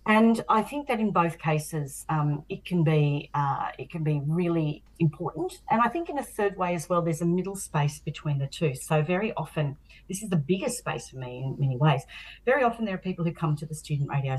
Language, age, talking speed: English, 40-59, 240 wpm